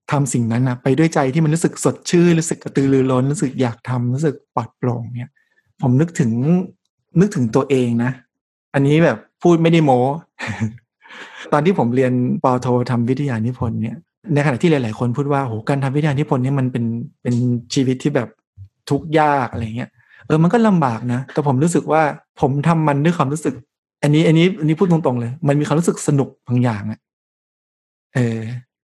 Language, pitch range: Thai, 125-150 Hz